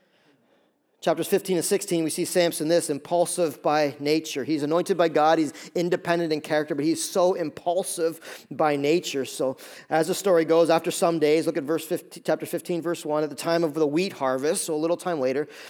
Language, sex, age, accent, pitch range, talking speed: English, male, 40-59, American, 155-190 Hz, 205 wpm